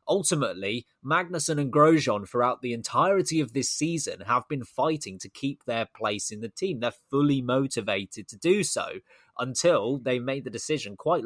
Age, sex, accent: 20-39, male, British